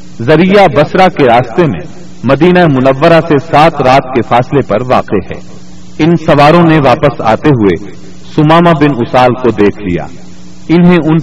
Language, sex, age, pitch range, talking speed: Urdu, male, 40-59, 105-150 Hz, 155 wpm